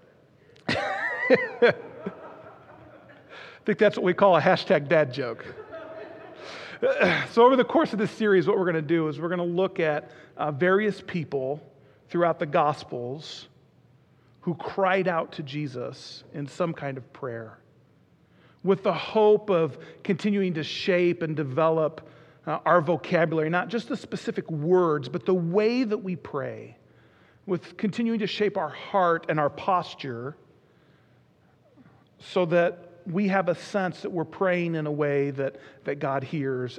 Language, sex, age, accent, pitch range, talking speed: English, male, 40-59, American, 160-205 Hz, 150 wpm